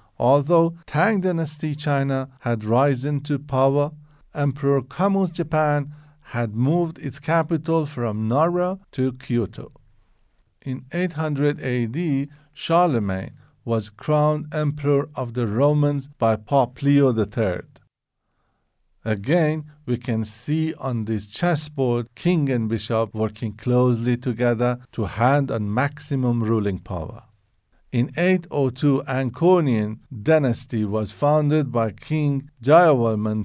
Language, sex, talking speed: English, male, 110 wpm